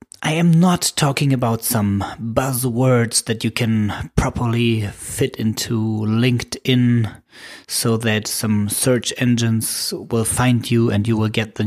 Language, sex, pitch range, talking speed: English, male, 110-130 Hz, 140 wpm